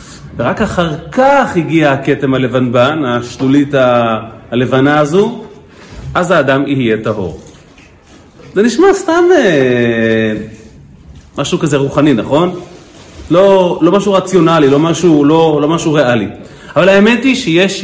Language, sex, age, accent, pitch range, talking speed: Hebrew, male, 40-59, native, 110-170 Hz, 120 wpm